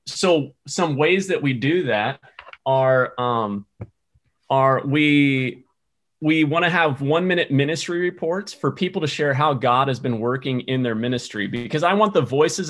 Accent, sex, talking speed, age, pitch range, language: American, male, 170 wpm, 30-49, 125-150 Hz, English